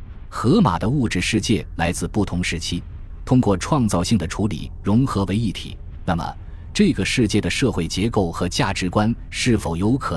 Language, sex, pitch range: Chinese, male, 85-110 Hz